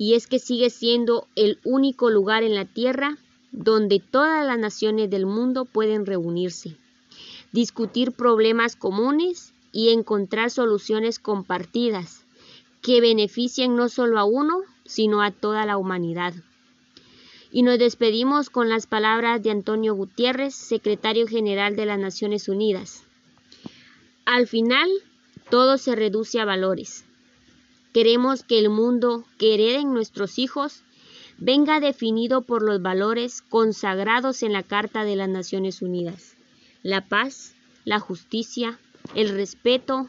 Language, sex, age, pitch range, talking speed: Spanish, female, 20-39, 205-245 Hz, 130 wpm